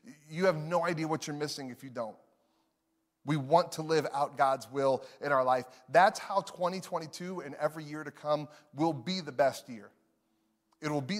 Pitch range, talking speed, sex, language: 135-165 Hz, 195 wpm, male, English